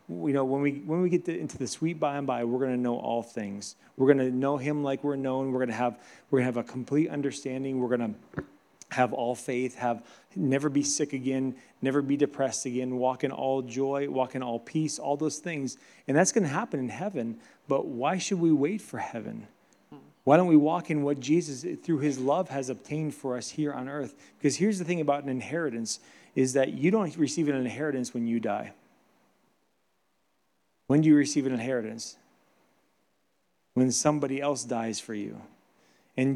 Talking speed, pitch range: 200 wpm, 130-155 Hz